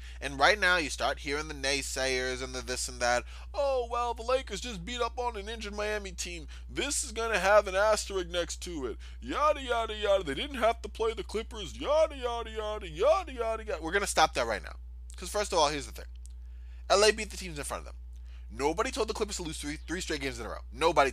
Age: 20-39